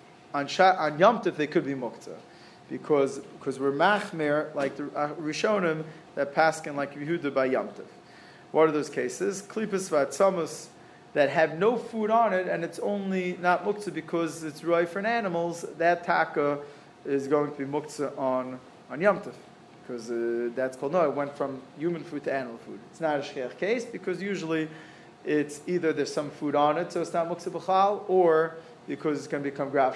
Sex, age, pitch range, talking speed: male, 30-49, 140-170 Hz, 185 wpm